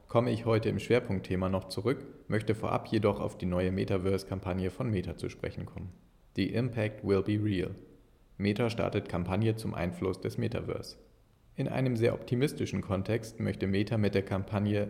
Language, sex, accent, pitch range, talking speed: German, male, German, 95-115 Hz, 165 wpm